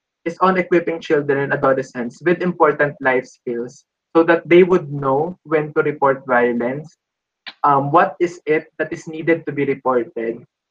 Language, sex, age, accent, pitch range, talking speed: Filipino, male, 20-39, native, 135-165 Hz, 160 wpm